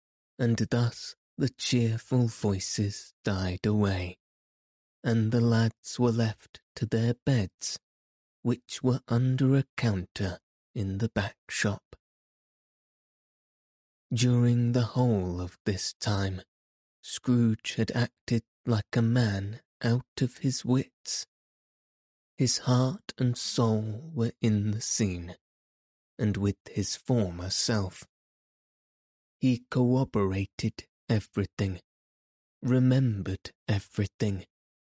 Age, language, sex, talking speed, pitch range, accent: 30-49, English, male, 100 wpm, 100-120 Hz, British